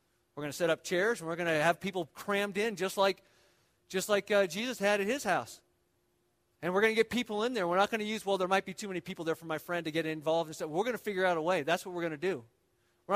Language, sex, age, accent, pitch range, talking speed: English, male, 30-49, American, 180-225 Hz, 305 wpm